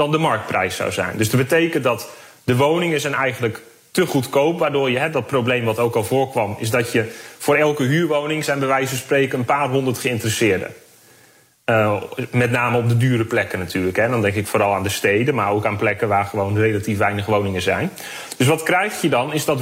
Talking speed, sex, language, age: 220 wpm, male, Dutch, 30-49